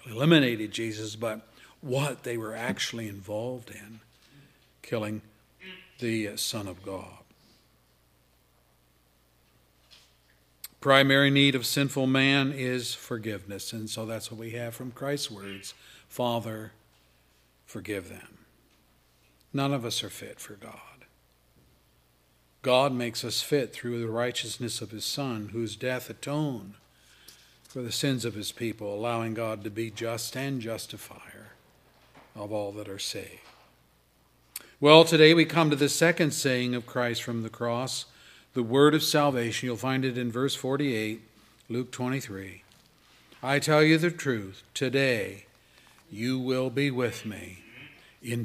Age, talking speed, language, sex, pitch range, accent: 50-69, 135 wpm, English, male, 100-135 Hz, American